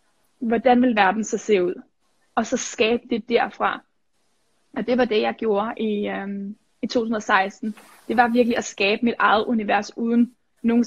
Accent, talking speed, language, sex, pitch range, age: native, 170 wpm, Danish, female, 215-245 Hz, 20-39